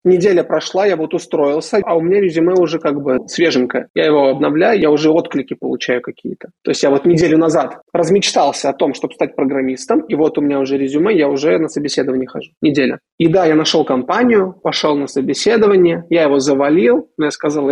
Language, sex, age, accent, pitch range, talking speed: Russian, male, 20-39, native, 140-180 Hz, 200 wpm